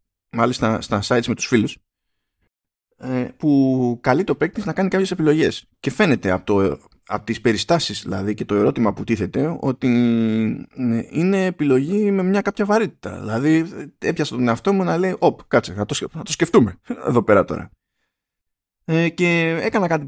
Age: 20-39